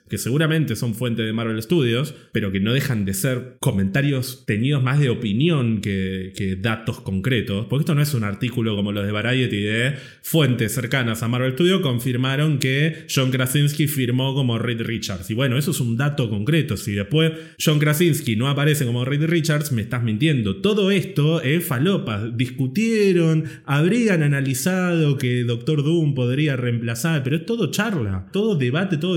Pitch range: 120-155 Hz